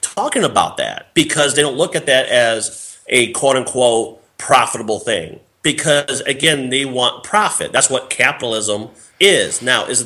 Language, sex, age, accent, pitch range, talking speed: English, male, 30-49, American, 105-150 Hz, 155 wpm